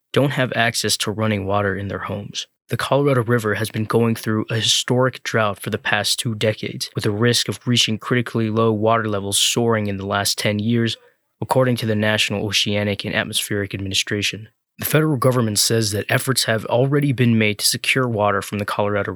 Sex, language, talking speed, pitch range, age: male, English, 195 wpm, 105-125 Hz, 20-39